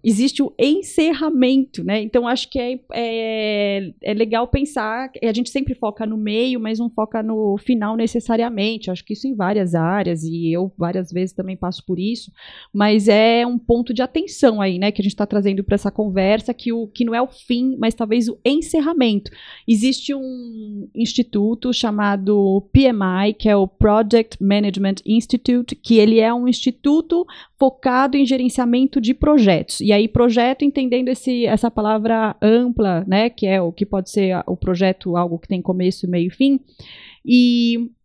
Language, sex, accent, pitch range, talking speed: Portuguese, female, Brazilian, 195-245 Hz, 180 wpm